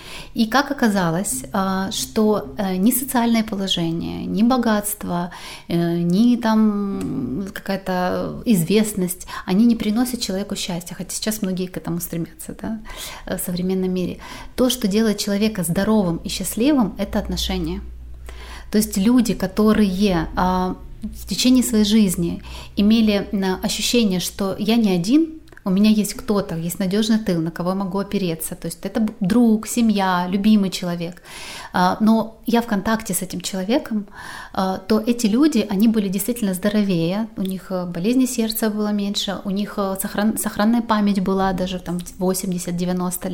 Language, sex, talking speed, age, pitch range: Russian, female, 135 wpm, 30-49, 185-220 Hz